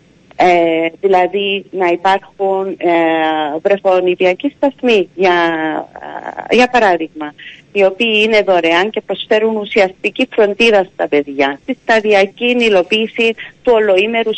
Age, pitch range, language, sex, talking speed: 40-59, 180-250 Hz, Greek, female, 110 wpm